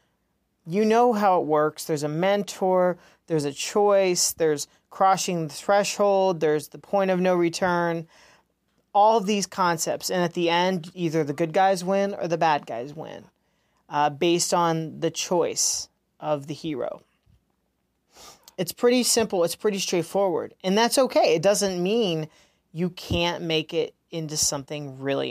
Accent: American